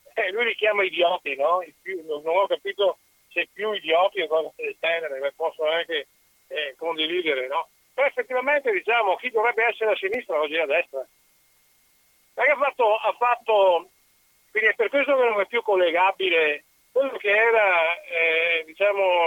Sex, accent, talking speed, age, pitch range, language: male, native, 165 wpm, 50-69, 170-235 Hz, Italian